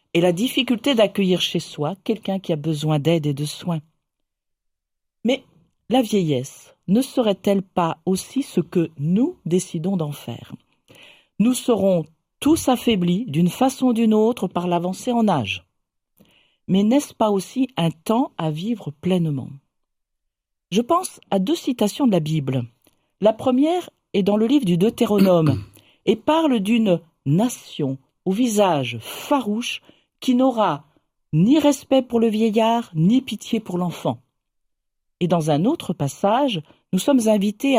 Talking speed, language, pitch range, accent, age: 145 wpm, French, 150-230 Hz, French, 50-69